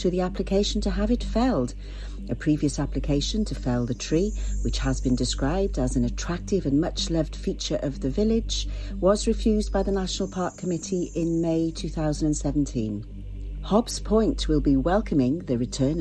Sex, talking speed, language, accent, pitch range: female, 160 wpm, English, British, 130-190 Hz